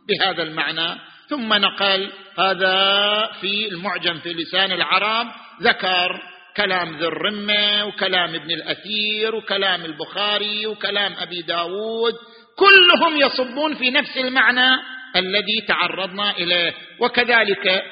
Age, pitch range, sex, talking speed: 50-69, 165-225 Hz, male, 105 wpm